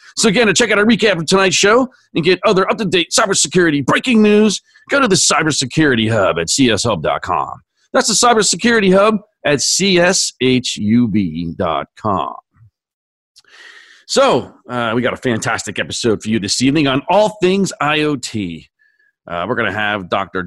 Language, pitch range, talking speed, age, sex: English, 115-185 Hz, 150 wpm, 40-59, male